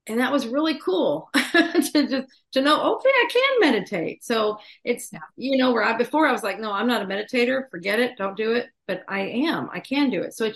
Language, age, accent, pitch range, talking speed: English, 40-59, American, 205-260 Hz, 245 wpm